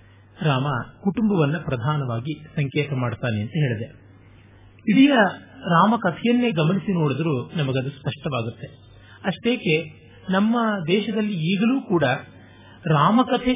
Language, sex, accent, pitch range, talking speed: Kannada, male, native, 130-200 Hz, 85 wpm